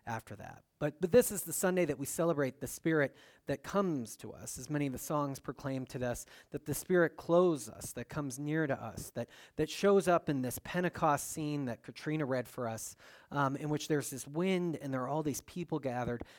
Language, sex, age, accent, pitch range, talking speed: English, male, 30-49, American, 130-170 Hz, 225 wpm